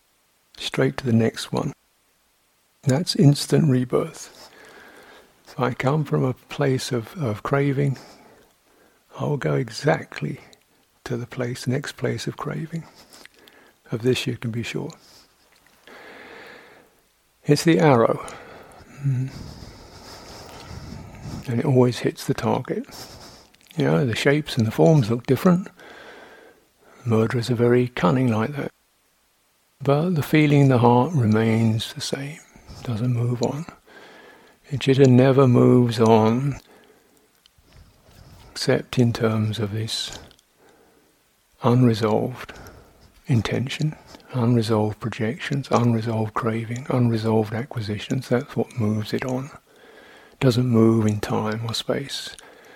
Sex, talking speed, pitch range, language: male, 115 wpm, 110-135 Hz, English